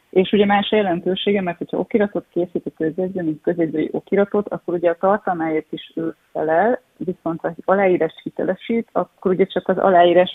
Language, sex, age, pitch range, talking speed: Hungarian, female, 30-49, 160-185 Hz, 175 wpm